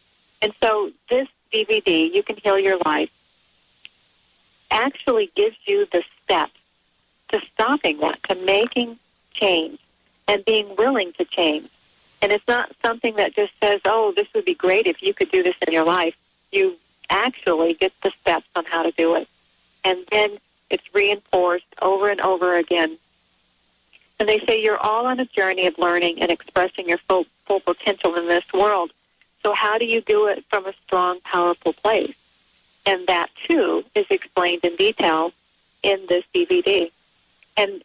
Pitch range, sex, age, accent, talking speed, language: 180-240 Hz, female, 50-69, American, 170 wpm, English